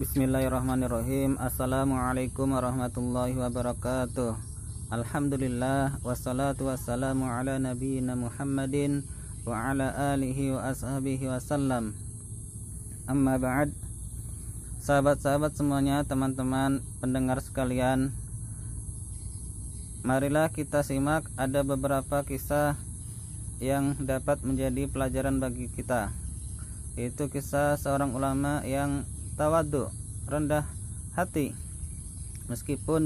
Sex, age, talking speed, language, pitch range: male, 20-39, 75 wpm, Indonesian, 110-145 Hz